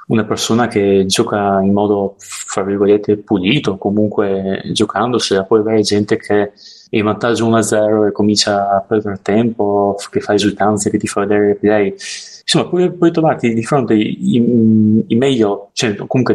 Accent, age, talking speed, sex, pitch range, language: native, 20-39, 175 wpm, male, 100-120 Hz, Italian